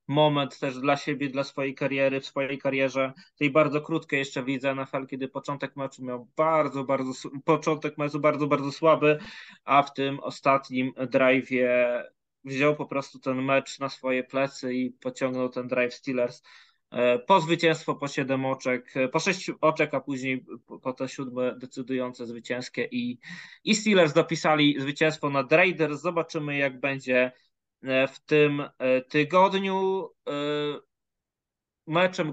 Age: 20-39